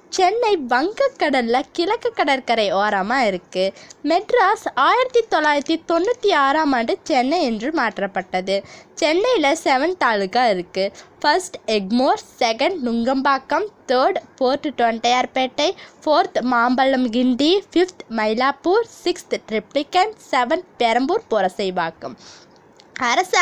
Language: Tamil